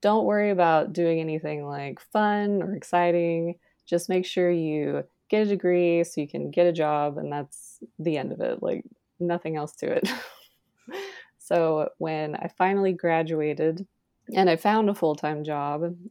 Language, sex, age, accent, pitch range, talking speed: English, female, 20-39, American, 155-175 Hz, 170 wpm